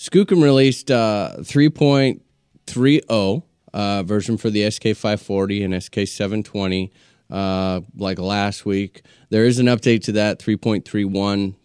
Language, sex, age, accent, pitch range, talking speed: English, male, 20-39, American, 95-115 Hz, 120 wpm